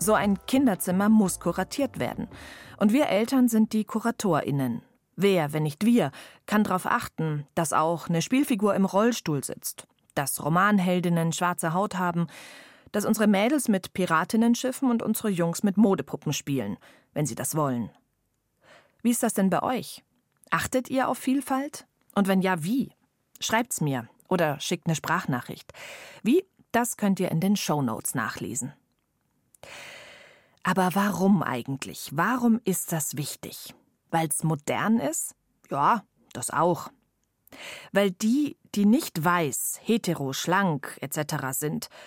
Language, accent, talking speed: German, German, 140 wpm